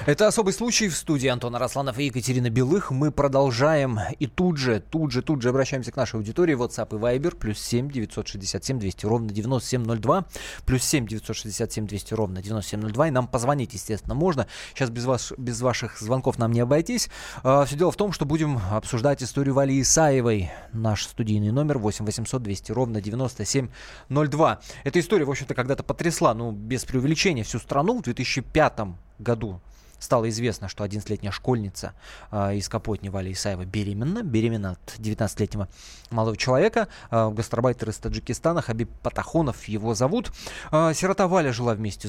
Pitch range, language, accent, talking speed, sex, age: 110-145 Hz, Russian, native, 165 wpm, male, 20-39